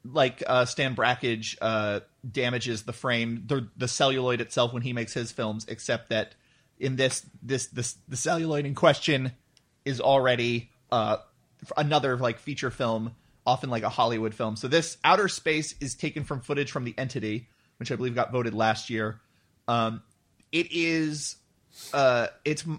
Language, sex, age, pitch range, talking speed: English, male, 30-49, 120-150 Hz, 165 wpm